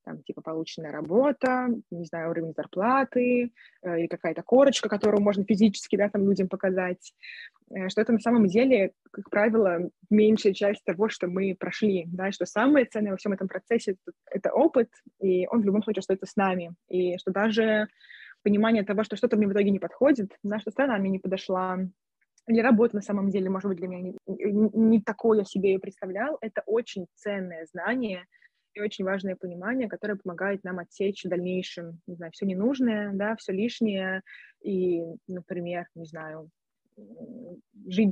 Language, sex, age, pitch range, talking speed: Russian, female, 20-39, 190-225 Hz, 180 wpm